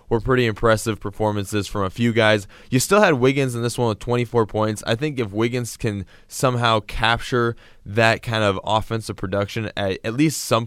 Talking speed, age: 190 wpm, 20-39